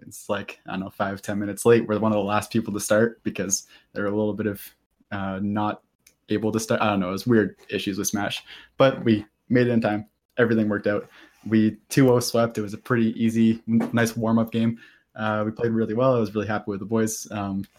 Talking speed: 235 wpm